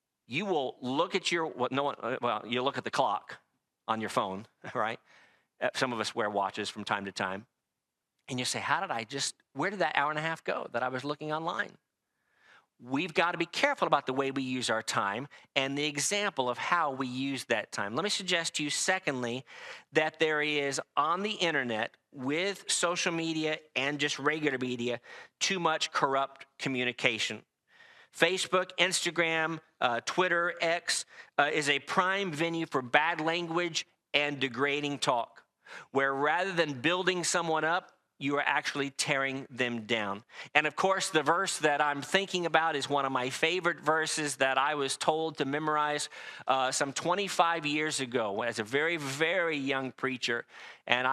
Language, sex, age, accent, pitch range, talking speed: English, male, 40-59, American, 135-170 Hz, 175 wpm